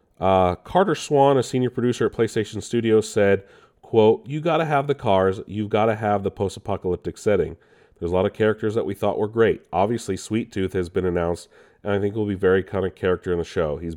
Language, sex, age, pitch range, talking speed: English, male, 30-49, 85-105 Hz, 225 wpm